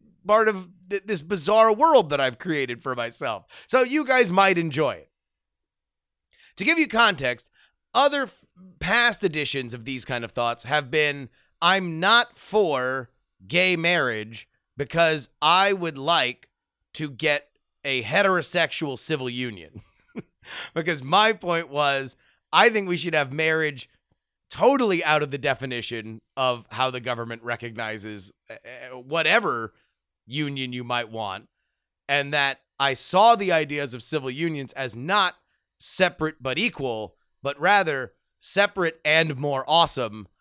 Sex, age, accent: male, 30-49, American